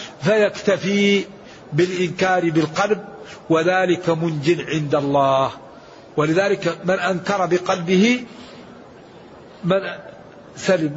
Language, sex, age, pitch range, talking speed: Arabic, male, 60-79, 180-215 Hz, 70 wpm